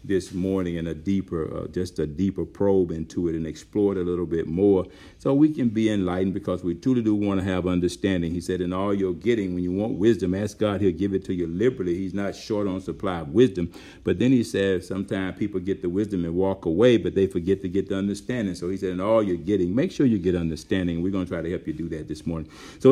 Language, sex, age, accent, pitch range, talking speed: English, male, 60-79, American, 90-100 Hz, 260 wpm